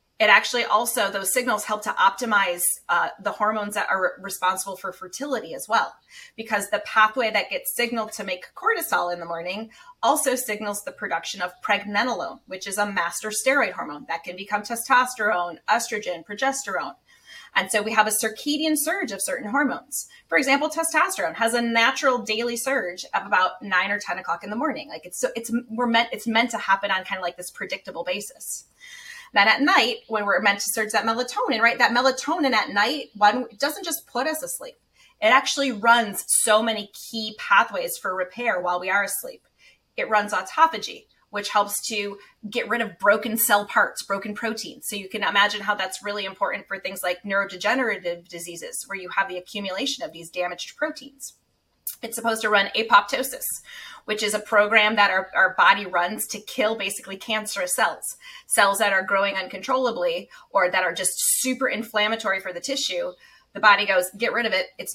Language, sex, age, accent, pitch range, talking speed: English, female, 20-39, American, 195-260 Hz, 190 wpm